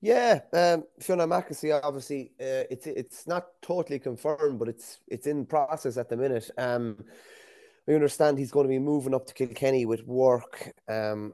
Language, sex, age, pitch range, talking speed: English, male, 20-39, 110-130 Hz, 175 wpm